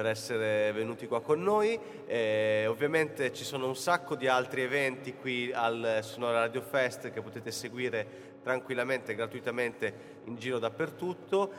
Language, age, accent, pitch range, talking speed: Italian, 30-49, native, 125-165 Hz, 140 wpm